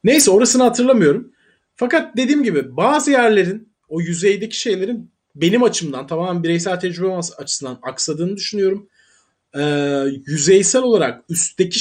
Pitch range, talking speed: 165-230 Hz, 115 wpm